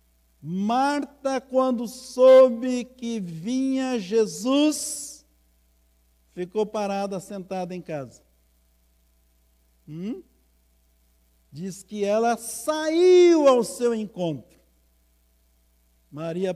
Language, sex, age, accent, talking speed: Portuguese, male, 60-79, Brazilian, 75 wpm